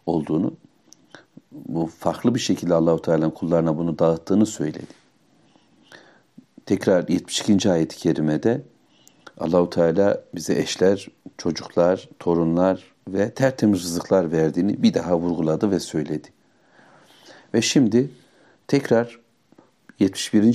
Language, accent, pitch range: Turkish, native, 85-105 Hz